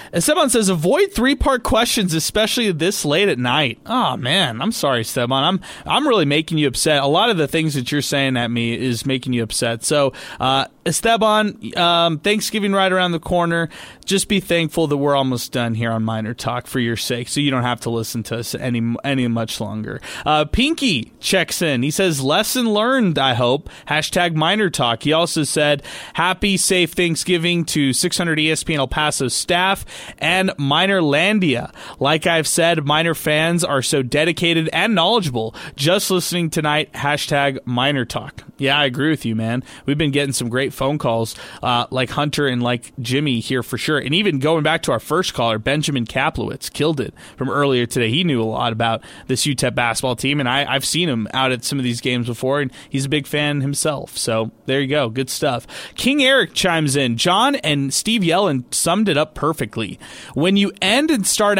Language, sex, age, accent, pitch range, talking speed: English, male, 20-39, American, 130-175 Hz, 195 wpm